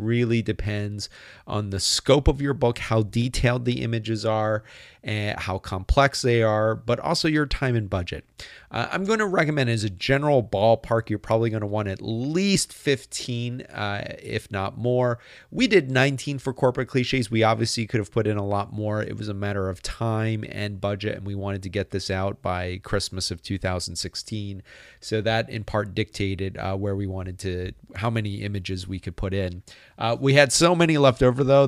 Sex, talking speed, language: male, 195 wpm, English